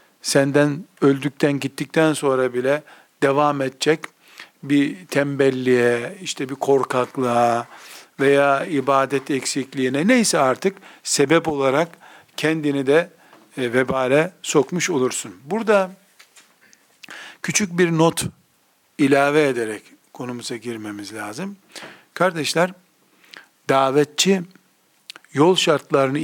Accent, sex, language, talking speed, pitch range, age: native, male, Turkish, 85 wpm, 135-165 Hz, 50-69